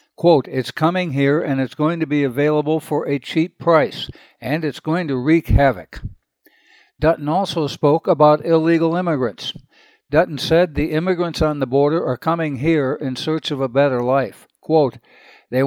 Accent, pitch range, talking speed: American, 135-160 Hz, 170 wpm